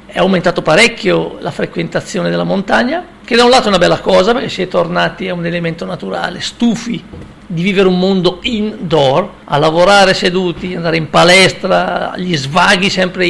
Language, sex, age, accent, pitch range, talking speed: Italian, male, 50-69, native, 175-215 Hz, 170 wpm